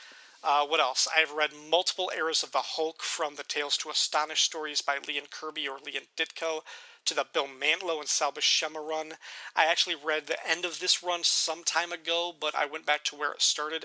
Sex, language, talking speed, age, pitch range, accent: male, English, 215 wpm, 40-59, 145-165 Hz, American